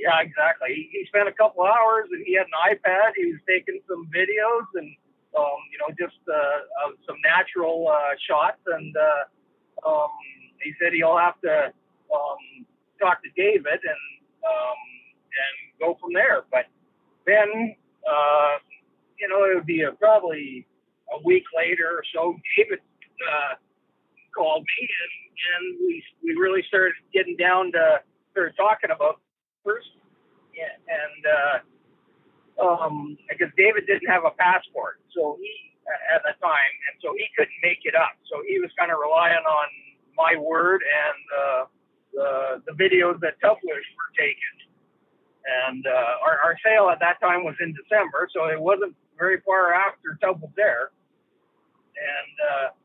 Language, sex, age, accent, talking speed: English, male, 50-69, American, 160 wpm